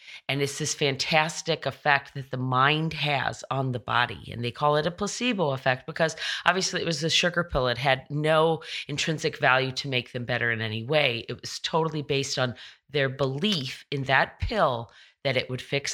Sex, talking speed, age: female, 195 wpm, 40-59